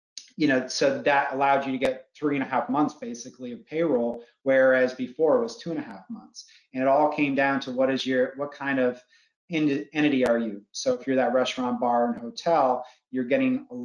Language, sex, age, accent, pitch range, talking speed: English, male, 30-49, American, 130-155 Hz, 220 wpm